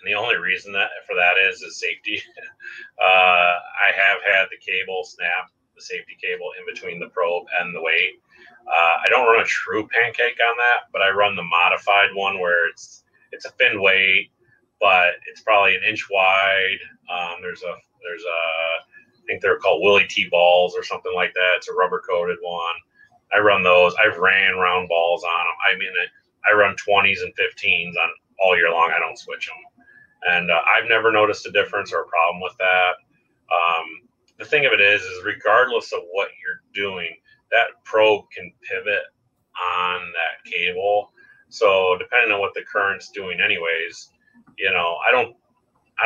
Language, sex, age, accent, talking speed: English, male, 30-49, American, 185 wpm